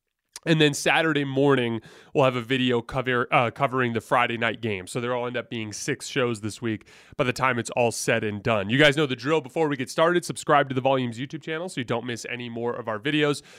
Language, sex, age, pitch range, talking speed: English, male, 30-49, 115-150 Hz, 250 wpm